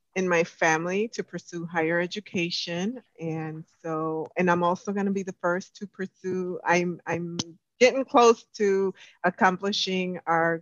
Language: English